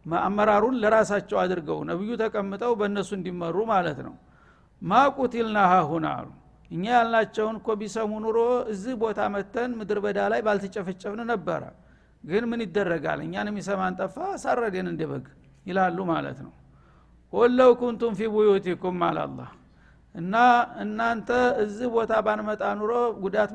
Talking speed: 115 wpm